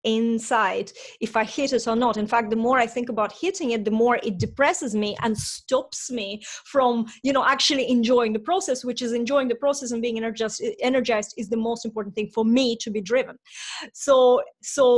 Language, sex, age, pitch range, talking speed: English, female, 30-49, 230-280 Hz, 205 wpm